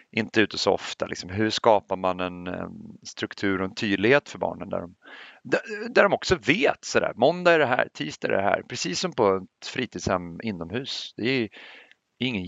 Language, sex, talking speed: Swedish, male, 200 wpm